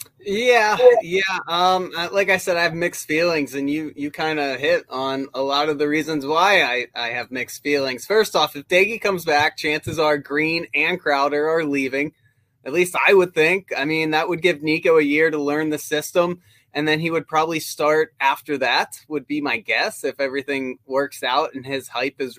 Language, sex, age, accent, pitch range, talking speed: English, male, 20-39, American, 140-175 Hz, 205 wpm